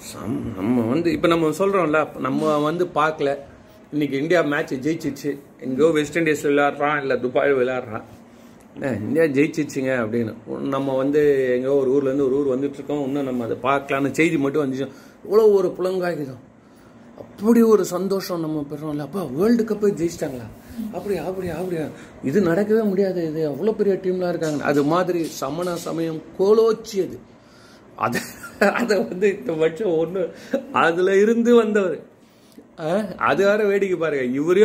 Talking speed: 120 wpm